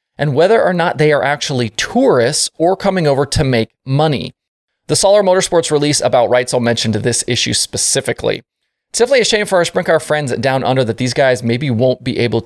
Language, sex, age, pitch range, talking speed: English, male, 20-39, 125-175 Hz, 210 wpm